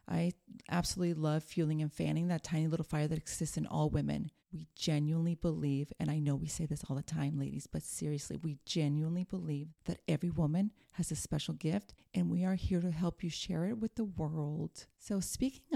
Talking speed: 205 wpm